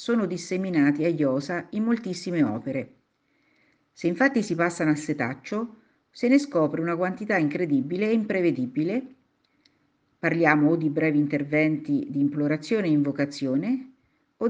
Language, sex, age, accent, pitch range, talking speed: Italian, female, 50-69, native, 150-230 Hz, 130 wpm